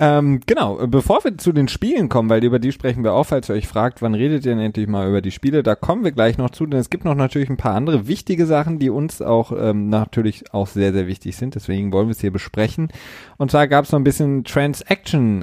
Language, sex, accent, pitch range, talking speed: German, male, German, 105-145 Hz, 260 wpm